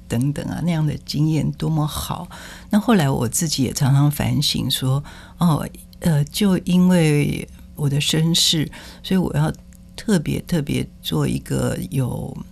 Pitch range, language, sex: 130-165 Hz, Chinese, female